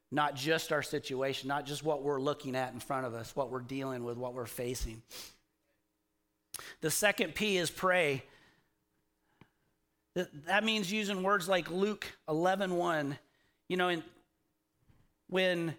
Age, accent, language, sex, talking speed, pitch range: 40-59, American, English, male, 140 wpm, 150-205 Hz